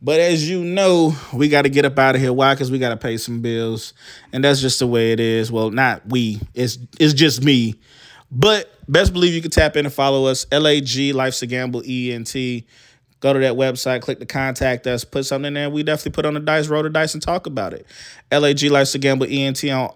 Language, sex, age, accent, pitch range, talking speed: English, male, 20-39, American, 125-140 Hz, 240 wpm